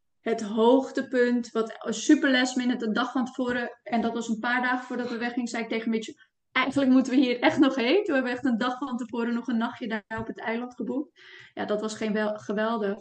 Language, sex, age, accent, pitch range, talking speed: Dutch, female, 20-39, Dutch, 220-245 Hz, 255 wpm